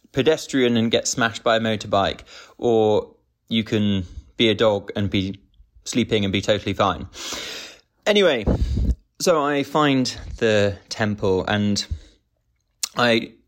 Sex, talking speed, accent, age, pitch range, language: male, 125 wpm, British, 20-39, 95-120 Hz, English